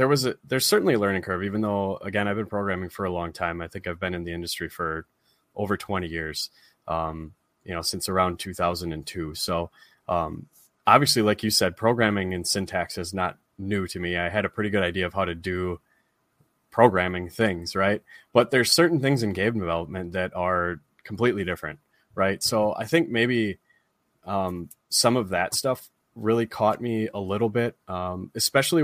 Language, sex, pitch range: English, male, 90-110 Hz